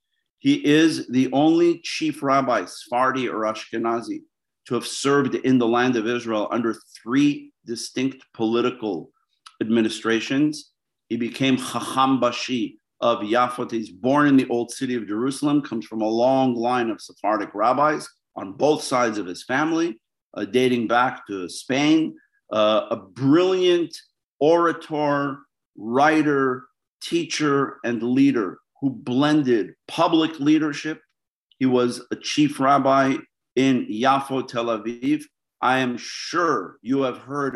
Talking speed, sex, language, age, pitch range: 130 wpm, male, English, 50-69, 120-150 Hz